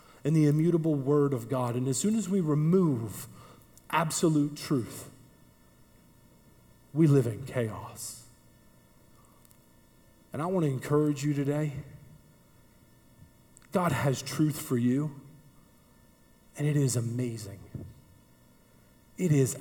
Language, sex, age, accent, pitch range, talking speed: English, male, 40-59, American, 120-145 Hz, 110 wpm